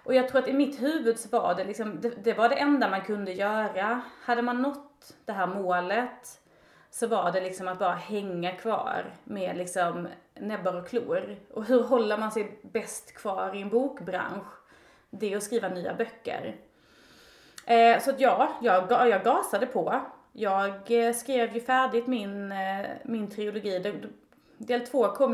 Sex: female